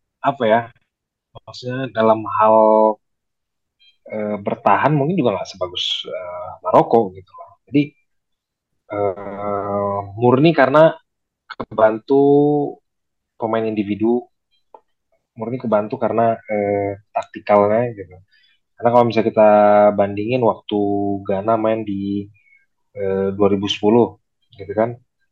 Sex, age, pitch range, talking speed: male, 20-39, 100-120 Hz, 90 wpm